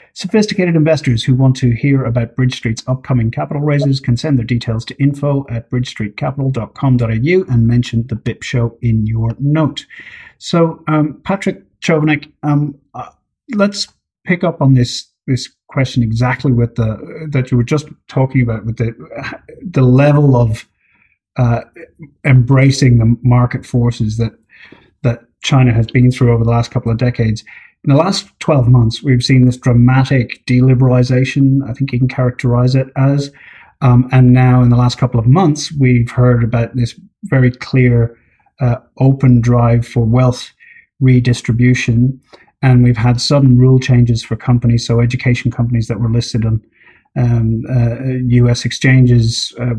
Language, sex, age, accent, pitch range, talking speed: English, male, 30-49, British, 120-140 Hz, 155 wpm